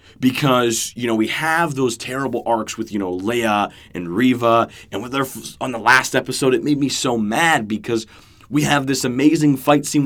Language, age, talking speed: English, 30-49, 205 wpm